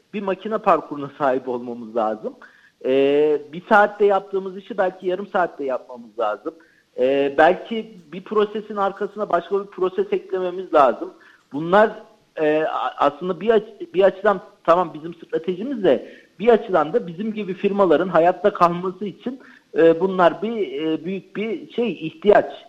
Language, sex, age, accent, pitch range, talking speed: Turkish, male, 50-69, native, 155-205 Hz, 145 wpm